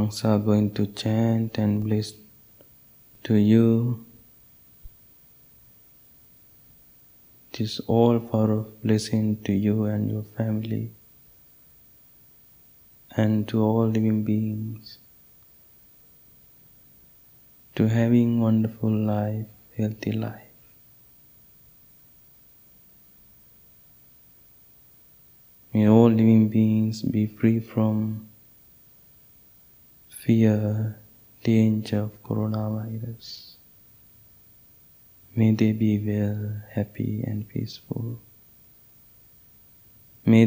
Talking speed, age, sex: 70 wpm, 20-39, male